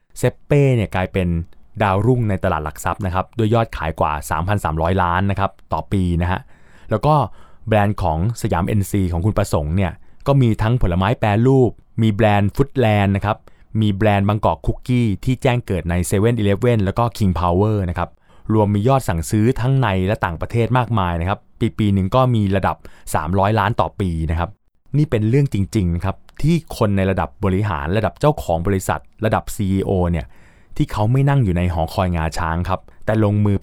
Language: Thai